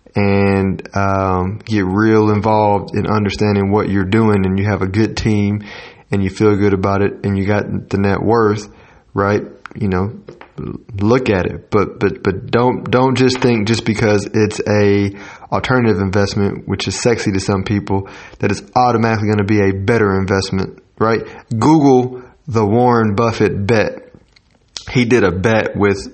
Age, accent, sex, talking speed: 30-49, American, male, 170 wpm